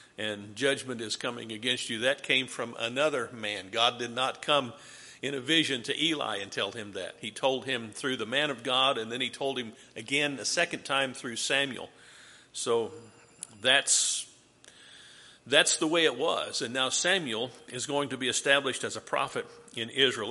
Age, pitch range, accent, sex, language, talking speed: 50-69, 125-190 Hz, American, male, English, 185 wpm